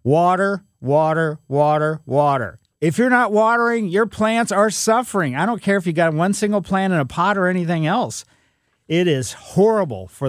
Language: English